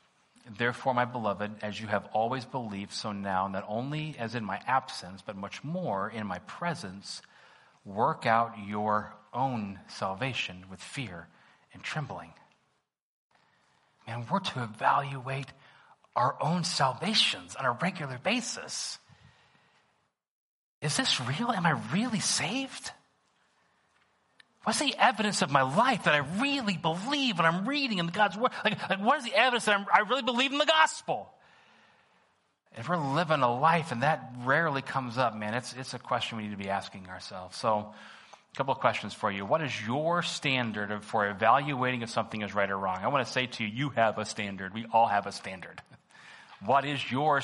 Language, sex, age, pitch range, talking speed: English, male, 30-49, 105-175 Hz, 170 wpm